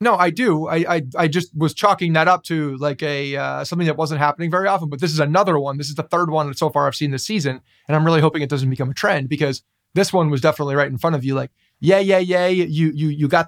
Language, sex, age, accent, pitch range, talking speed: English, male, 30-49, American, 140-170 Hz, 290 wpm